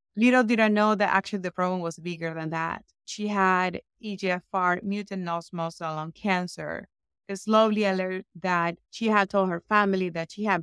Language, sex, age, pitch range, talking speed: English, female, 30-49, 175-210 Hz, 175 wpm